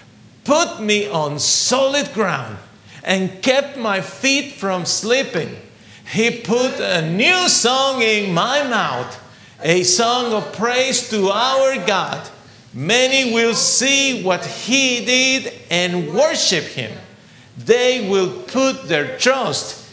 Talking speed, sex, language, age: 120 wpm, male, English, 50-69